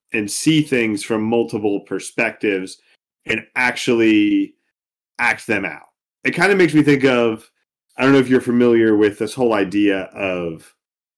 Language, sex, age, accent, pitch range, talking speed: English, male, 30-49, American, 95-120 Hz, 155 wpm